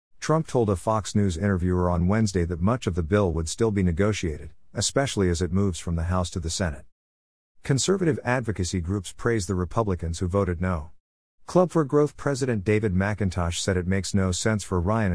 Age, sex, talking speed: 50-69, male, 195 wpm